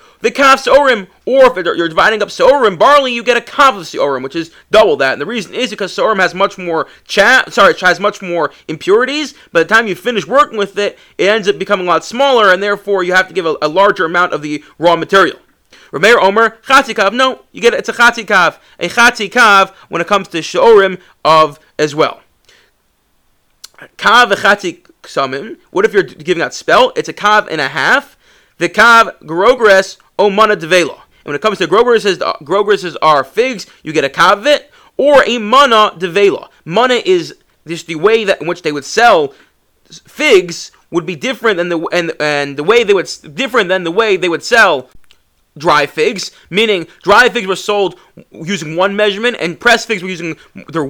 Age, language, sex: 30-49, English, male